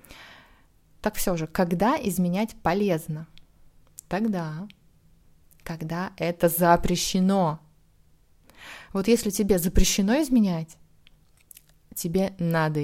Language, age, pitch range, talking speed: Russian, 20-39, 160-200 Hz, 80 wpm